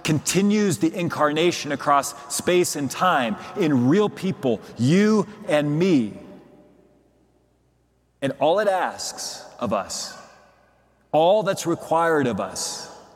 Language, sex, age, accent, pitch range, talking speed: English, male, 40-59, American, 125-175 Hz, 110 wpm